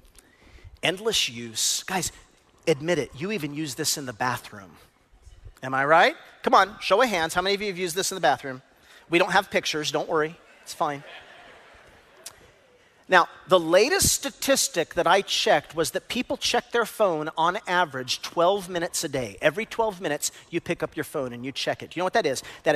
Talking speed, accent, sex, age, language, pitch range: 200 wpm, American, male, 40-59, English, 160-240 Hz